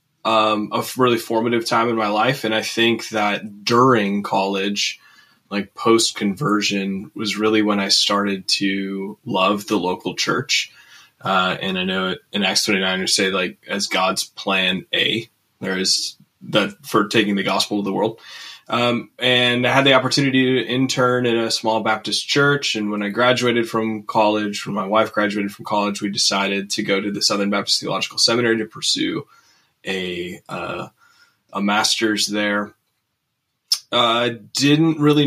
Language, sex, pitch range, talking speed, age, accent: English, male, 105-120 Hz, 160 wpm, 20-39, American